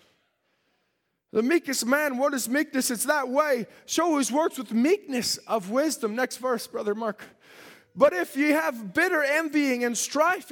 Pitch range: 255-310 Hz